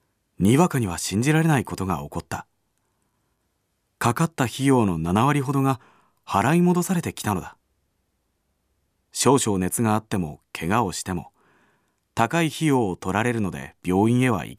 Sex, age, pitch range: male, 40-59, 90-140 Hz